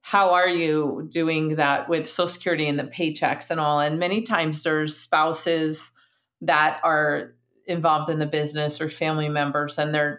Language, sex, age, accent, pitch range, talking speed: English, female, 40-59, American, 150-180 Hz, 170 wpm